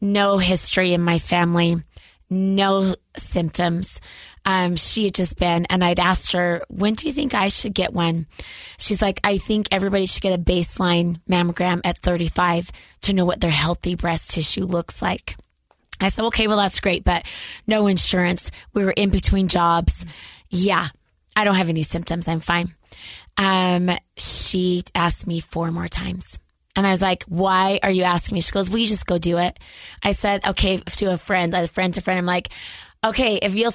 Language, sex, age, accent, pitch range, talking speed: English, female, 20-39, American, 175-195 Hz, 190 wpm